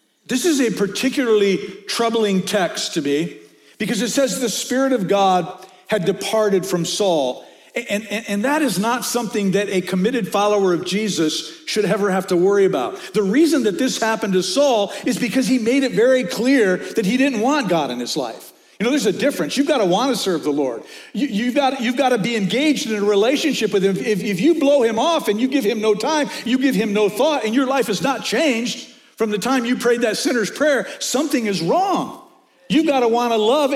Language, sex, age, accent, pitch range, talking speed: English, male, 50-69, American, 205-275 Hz, 220 wpm